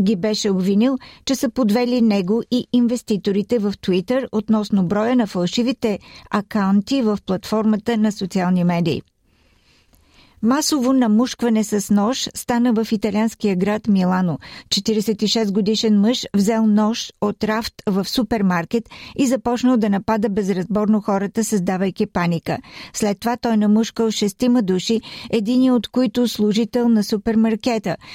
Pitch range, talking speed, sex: 200-235 Hz, 125 wpm, female